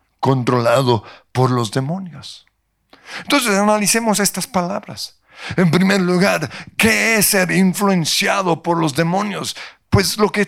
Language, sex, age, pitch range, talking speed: Spanish, male, 50-69, 155-205 Hz, 120 wpm